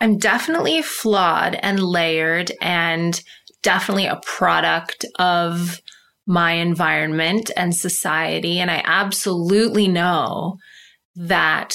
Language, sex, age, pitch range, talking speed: English, female, 20-39, 170-210 Hz, 95 wpm